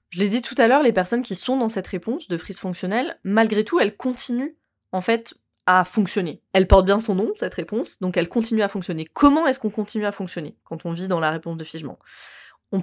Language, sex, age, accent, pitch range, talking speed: French, female, 20-39, French, 170-200 Hz, 240 wpm